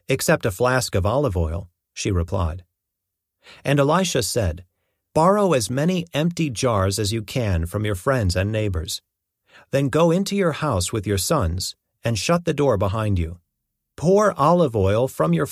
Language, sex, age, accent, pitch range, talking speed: English, male, 40-59, American, 90-135 Hz, 165 wpm